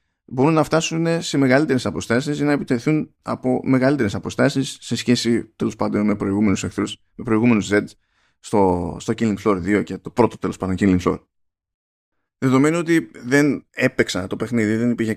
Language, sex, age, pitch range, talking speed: Greek, male, 20-39, 100-130 Hz, 165 wpm